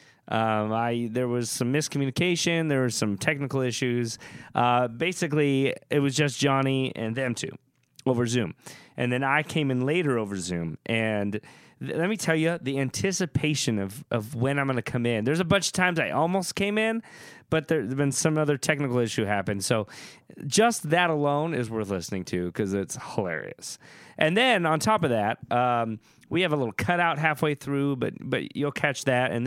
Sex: male